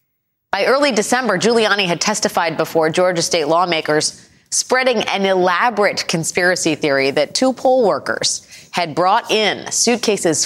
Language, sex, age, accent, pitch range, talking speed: English, female, 30-49, American, 150-210 Hz, 130 wpm